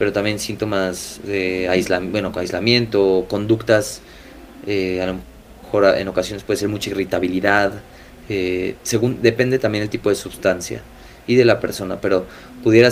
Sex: male